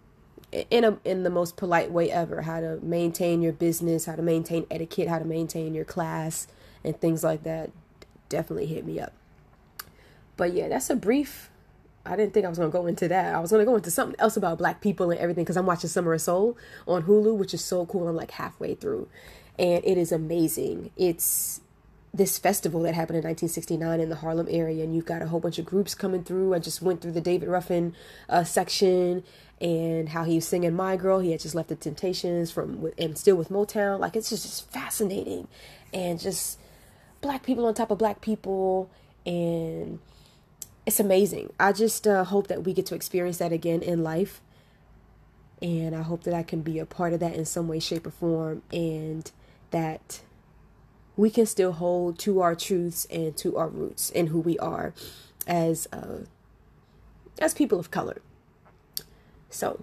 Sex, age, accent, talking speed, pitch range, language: female, 20-39, American, 200 wpm, 165-190 Hz, English